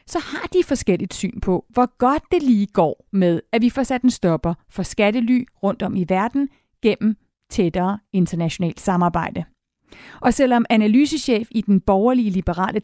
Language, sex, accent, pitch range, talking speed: Danish, female, native, 190-260 Hz, 165 wpm